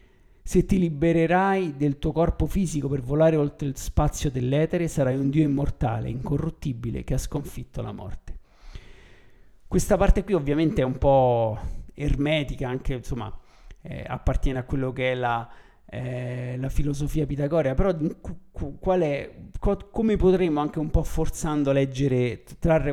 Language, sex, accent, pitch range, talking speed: Italian, male, native, 125-155 Hz, 145 wpm